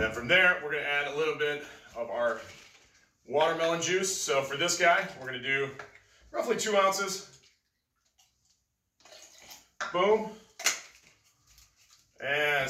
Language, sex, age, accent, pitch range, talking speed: English, male, 30-49, American, 125-175 Hz, 120 wpm